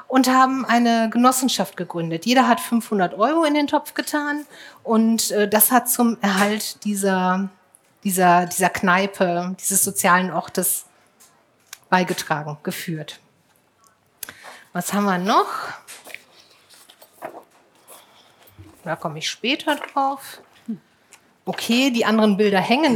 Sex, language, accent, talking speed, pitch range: female, German, German, 105 wpm, 190-250 Hz